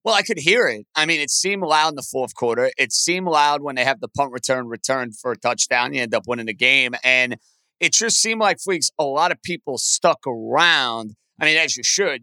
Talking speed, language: 245 wpm, English